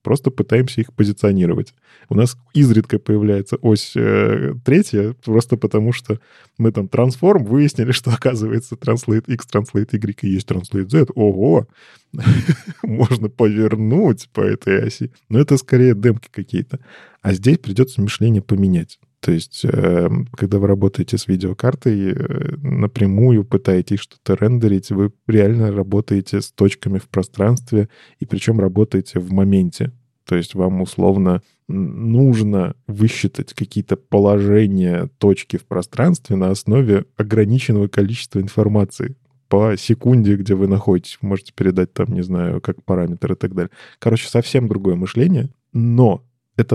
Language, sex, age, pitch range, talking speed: Russian, male, 20-39, 95-120 Hz, 135 wpm